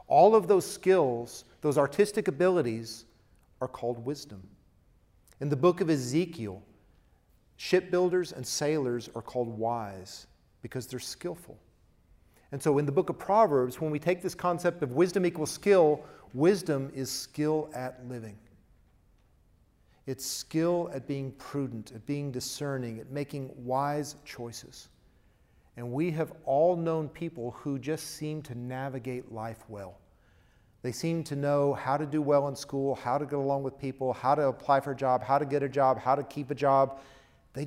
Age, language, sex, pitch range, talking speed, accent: 40-59, English, male, 115-150 Hz, 165 wpm, American